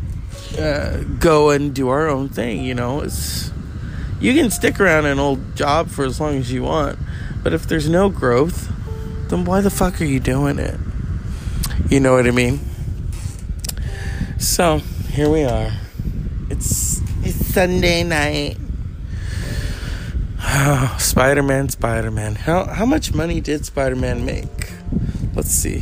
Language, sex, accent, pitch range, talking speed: English, male, American, 90-140 Hz, 140 wpm